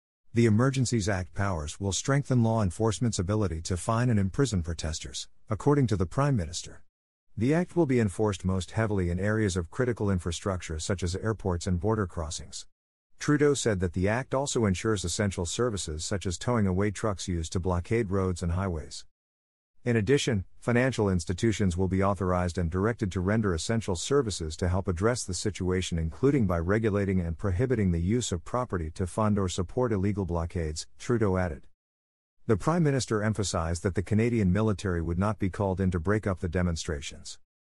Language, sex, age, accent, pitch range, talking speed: English, male, 50-69, American, 85-110 Hz, 175 wpm